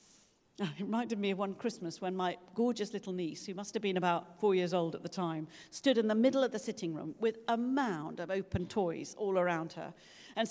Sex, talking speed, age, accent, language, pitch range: female, 230 wpm, 50-69, British, English, 180-245 Hz